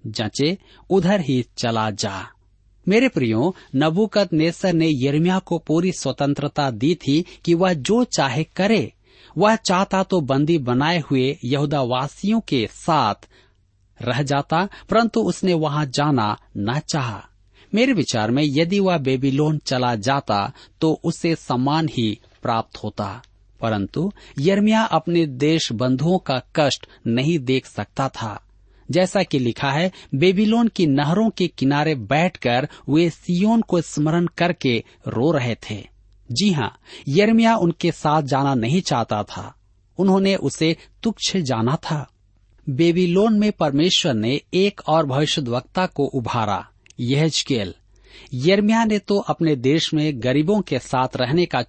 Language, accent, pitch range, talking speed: Hindi, native, 120-175 Hz, 135 wpm